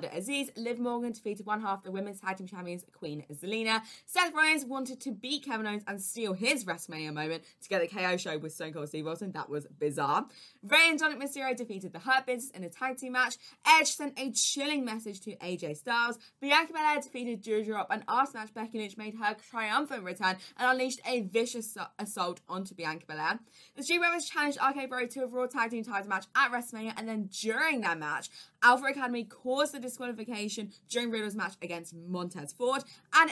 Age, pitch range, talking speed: 20-39, 185-260 Hz, 200 wpm